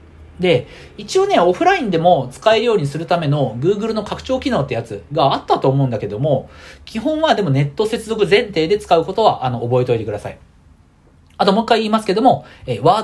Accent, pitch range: native, 130-220 Hz